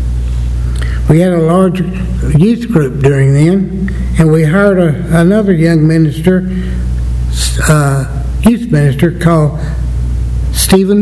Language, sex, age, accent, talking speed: English, male, 60-79, American, 105 wpm